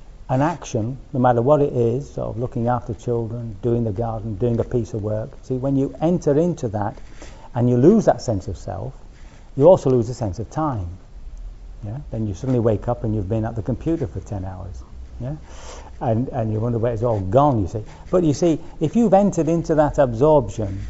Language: English